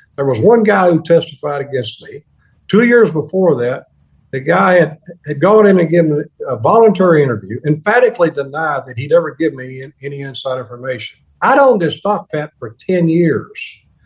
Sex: male